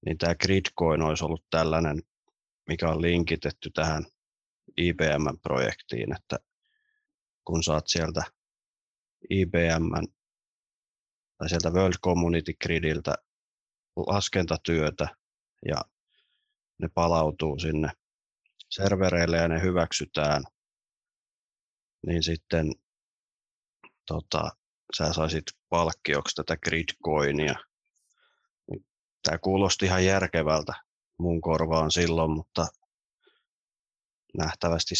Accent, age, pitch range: native, 30-49, 80-90 Hz